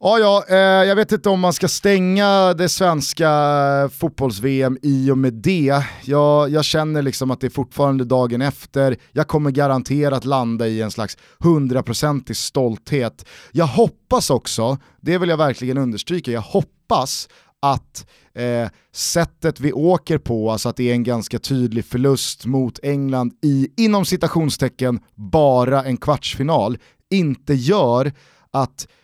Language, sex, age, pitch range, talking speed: Swedish, male, 30-49, 120-155 Hz, 145 wpm